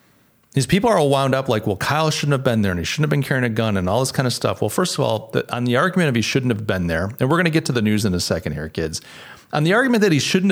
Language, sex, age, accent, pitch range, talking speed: English, male, 40-59, American, 110-160 Hz, 335 wpm